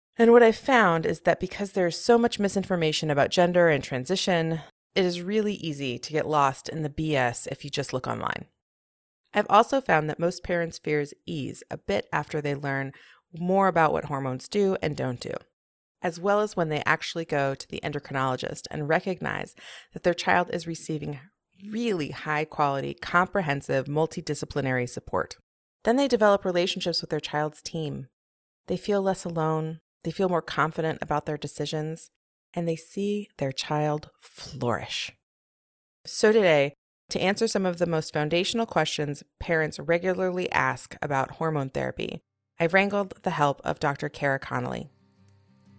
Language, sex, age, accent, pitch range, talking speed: English, female, 30-49, American, 140-185 Hz, 160 wpm